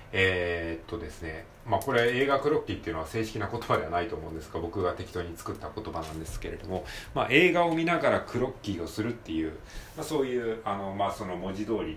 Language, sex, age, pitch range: Japanese, male, 40-59, 85-120 Hz